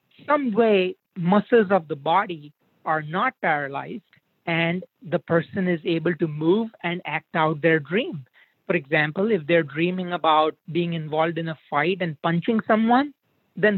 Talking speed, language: 155 wpm, English